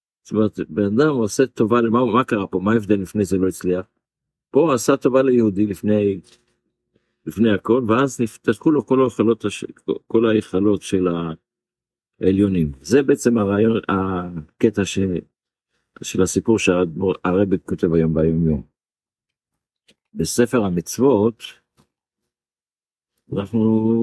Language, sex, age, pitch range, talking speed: Hebrew, male, 50-69, 95-120 Hz, 110 wpm